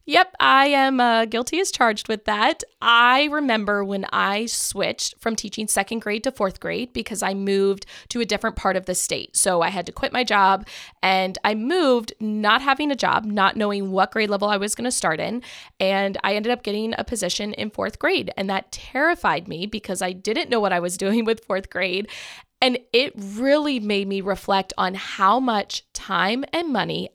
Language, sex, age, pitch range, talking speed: English, female, 20-39, 200-255 Hz, 205 wpm